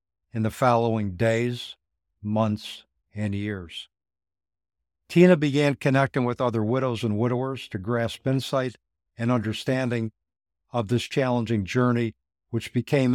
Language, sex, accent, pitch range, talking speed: English, male, American, 110-130 Hz, 120 wpm